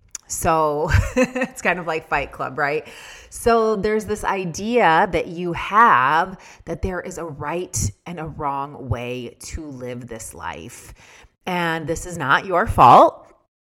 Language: English